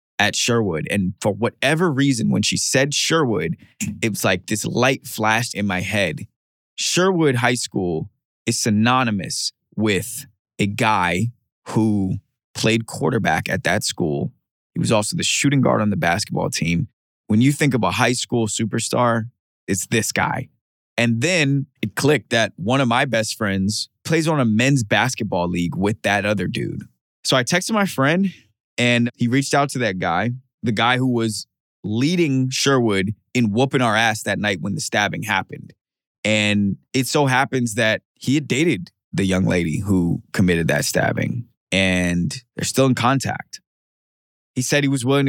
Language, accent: English, American